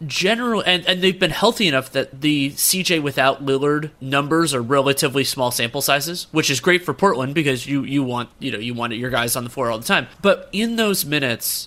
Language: English